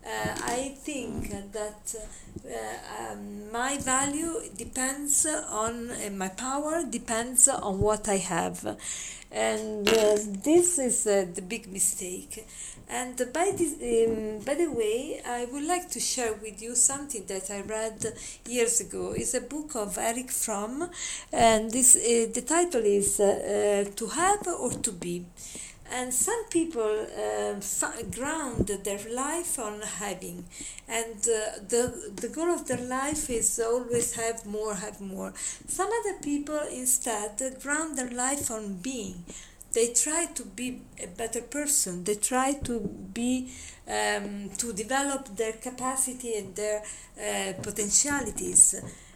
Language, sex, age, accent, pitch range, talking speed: English, female, 50-69, Italian, 210-265 Hz, 145 wpm